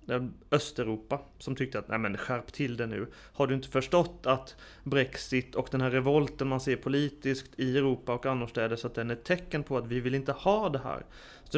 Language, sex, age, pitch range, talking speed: Swedish, male, 30-49, 125-145 Hz, 220 wpm